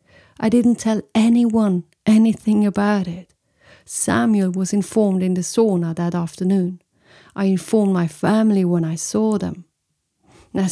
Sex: female